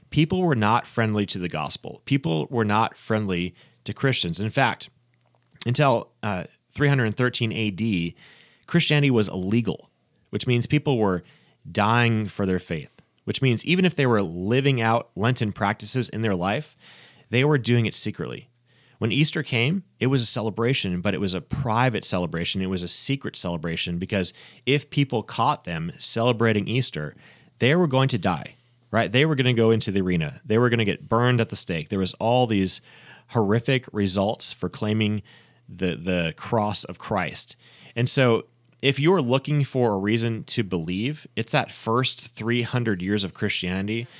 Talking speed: 170 wpm